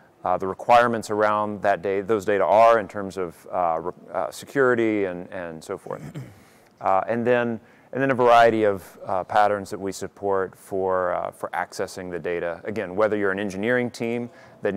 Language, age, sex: English, 30-49, male